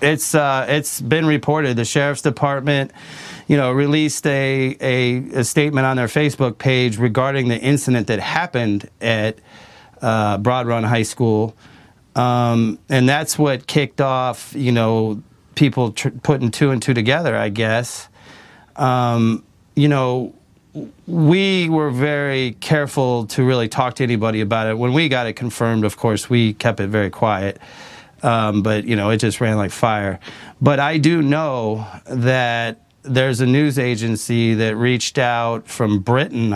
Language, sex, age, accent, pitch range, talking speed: English, male, 40-59, American, 110-135 Hz, 160 wpm